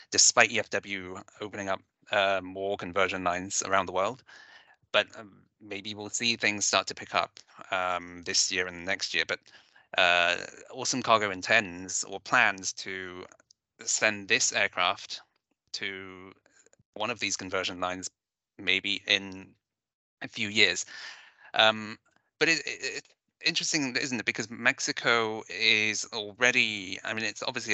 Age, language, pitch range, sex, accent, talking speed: 20-39, English, 95-105 Hz, male, British, 140 wpm